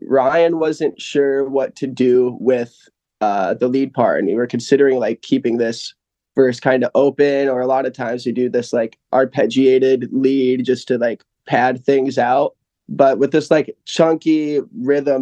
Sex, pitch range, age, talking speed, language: male, 125-140 Hz, 20-39, 180 wpm, English